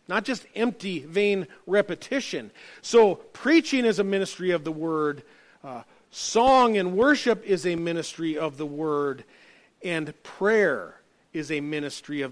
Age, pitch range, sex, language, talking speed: 40-59, 145-200 Hz, male, English, 140 wpm